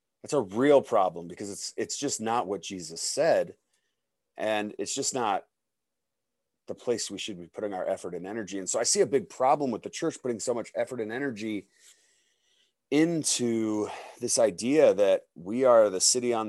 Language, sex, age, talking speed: English, male, 30-49, 185 wpm